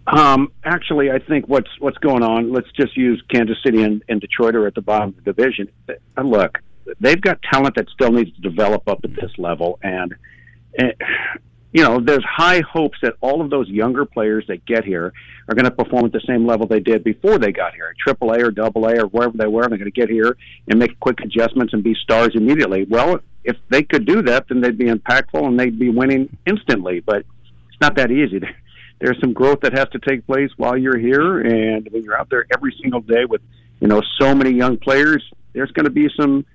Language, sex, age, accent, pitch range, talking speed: English, male, 50-69, American, 110-130 Hz, 225 wpm